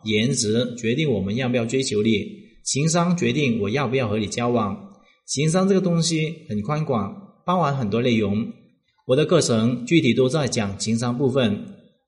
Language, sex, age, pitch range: Chinese, male, 30-49, 115-185 Hz